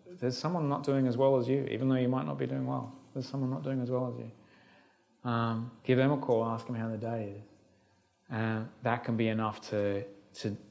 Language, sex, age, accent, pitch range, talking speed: English, male, 20-39, Australian, 115-140 Hz, 235 wpm